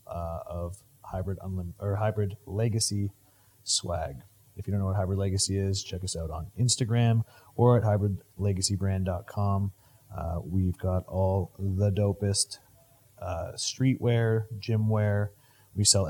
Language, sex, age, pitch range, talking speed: English, male, 30-49, 95-110 Hz, 135 wpm